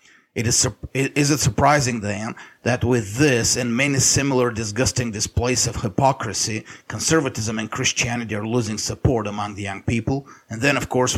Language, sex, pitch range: English, male, 110-130 Hz